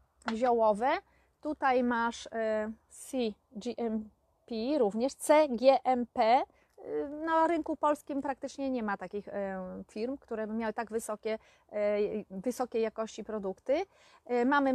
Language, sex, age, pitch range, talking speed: Polish, female, 30-49, 230-275 Hz, 95 wpm